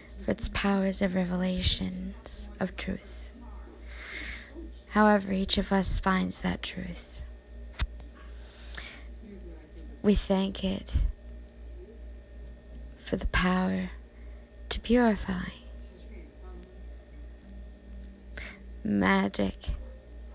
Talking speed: 70 wpm